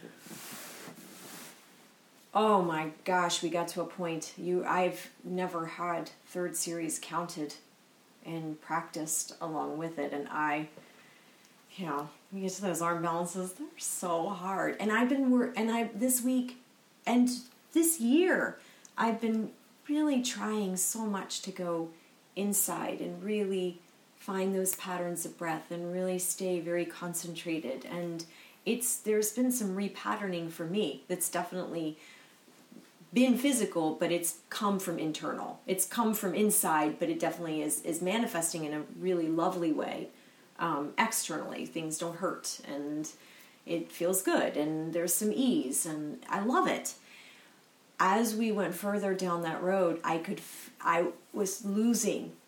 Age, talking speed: 30-49, 145 wpm